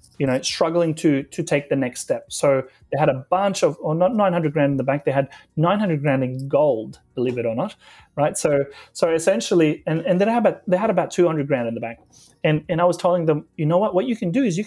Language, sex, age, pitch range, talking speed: English, male, 30-49, 150-240 Hz, 260 wpm